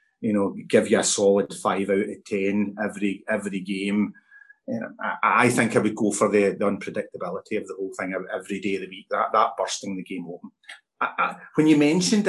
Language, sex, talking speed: English, male, 220 wpm